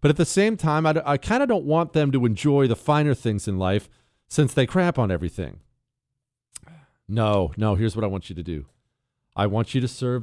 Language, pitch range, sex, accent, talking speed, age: English, 105-140 Hz, male, American, 230 wpm, 40-59